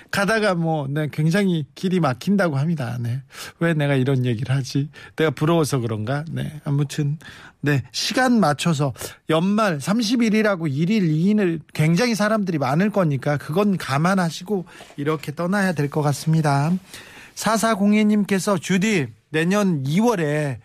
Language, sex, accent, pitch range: Korean, male, native, 140-190 Hz